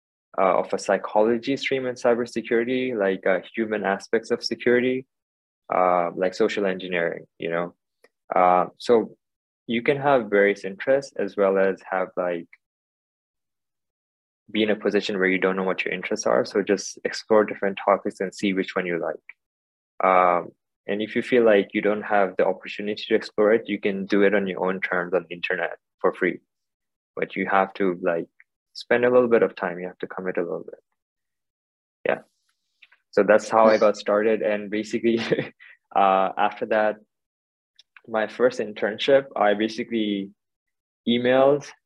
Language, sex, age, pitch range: Chinese, male, 20-39, 95-115 Hz